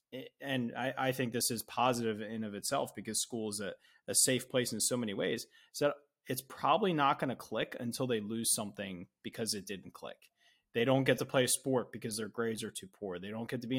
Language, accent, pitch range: English, American, 110-135 Hz